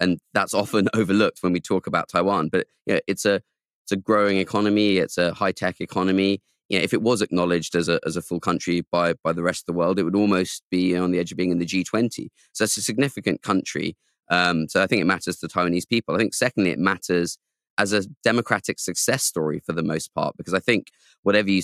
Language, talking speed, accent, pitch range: English, 250 wpm, British, 90-105 Hz